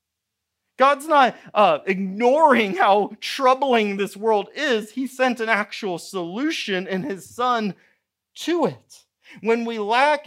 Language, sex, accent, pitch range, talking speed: English, male, American, 155-255 Hz, 130 wpm